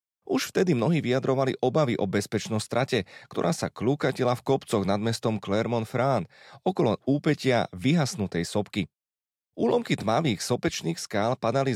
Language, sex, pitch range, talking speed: Slovak, male, 105-135 Hz, 130 wpm